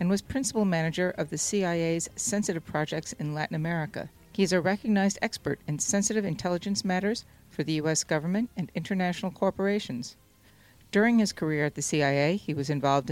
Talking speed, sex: 170 wpm, female